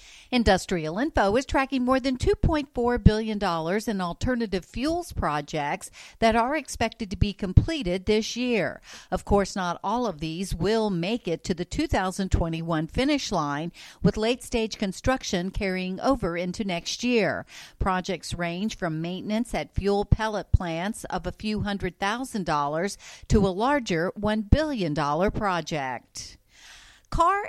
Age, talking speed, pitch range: 50-69, 140 wpm, 175-225 Hz